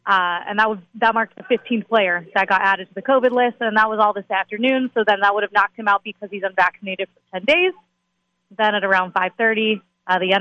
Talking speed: 235 wpm